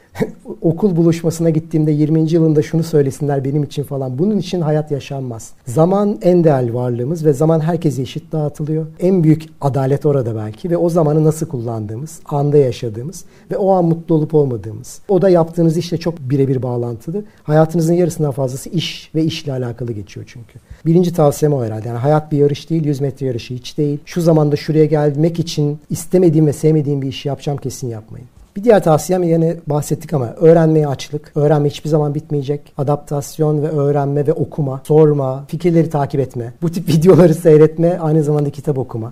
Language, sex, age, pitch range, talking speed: Turkish, male, 60-79, 140-165 Hz, 175 wpm